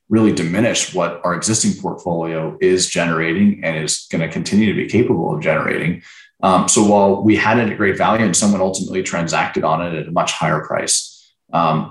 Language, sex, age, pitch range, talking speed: English, male, 30-49, 85-105 Hz, 195 wpm